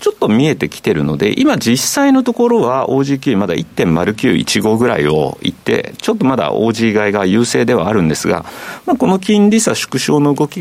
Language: Japanese